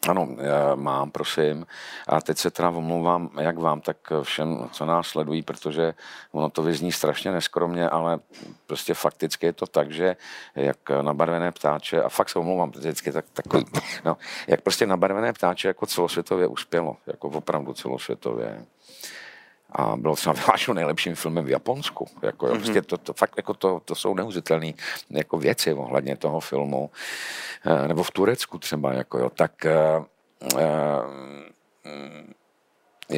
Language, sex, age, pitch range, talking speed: Czech, male, 50-69, 75-85 Hz, 150 wpm